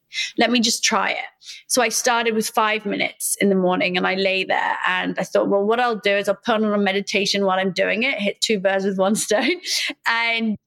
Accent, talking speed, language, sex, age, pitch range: British, 235 wpm, English, female, 30-49, 195-235 Hz